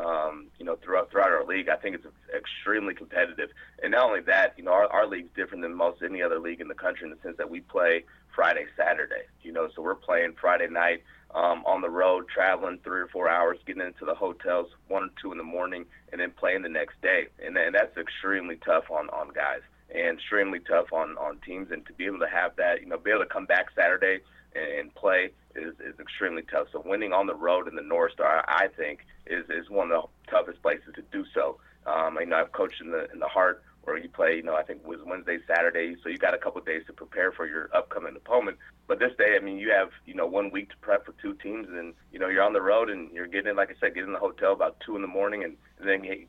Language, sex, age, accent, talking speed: English, male, 30-49, American, 260 wpm